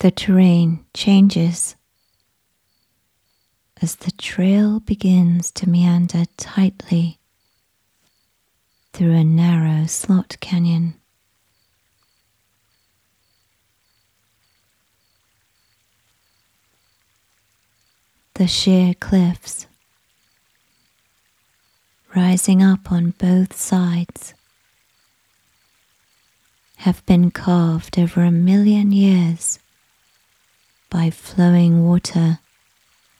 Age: 30-49